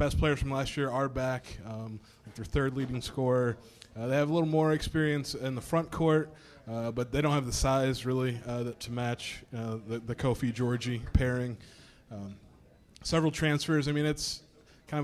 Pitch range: 115-135 Hz